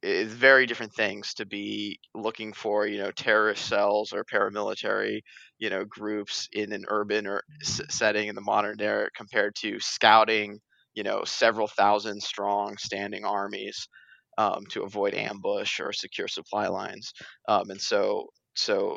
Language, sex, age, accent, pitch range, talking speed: English, male, 20-39, American, 105-115 Hz, 150 wpm